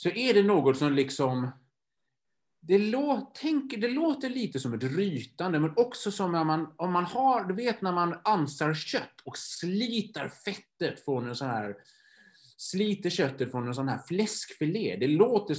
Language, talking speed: Swedish, 175 wpm